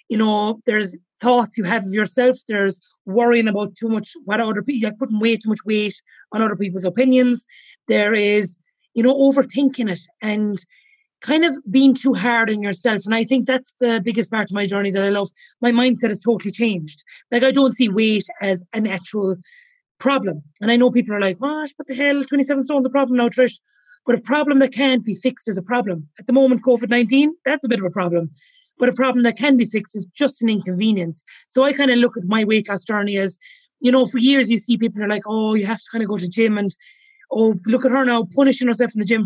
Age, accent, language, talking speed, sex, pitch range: 30-49, Irish, English, 235 wpm, female, 210-265 Hz